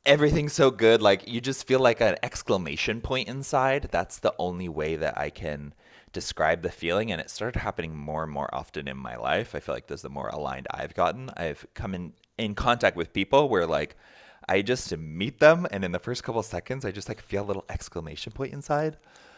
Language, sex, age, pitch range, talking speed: English, male, 30-49, 85-130 Hz, 220 wpm